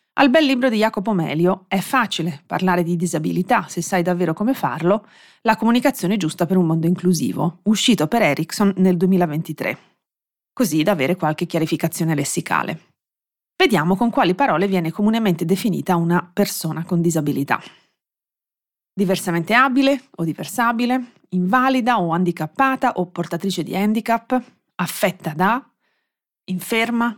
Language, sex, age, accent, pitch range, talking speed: Italian, female, 30-49, native, 175-245 Hz, 130 wpm